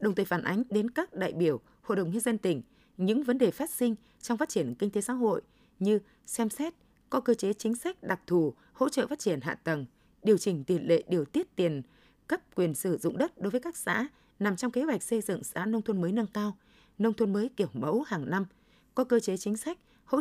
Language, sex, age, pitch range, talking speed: Vietnamese, female, 20-39, 180-240 Hz, 245 wpm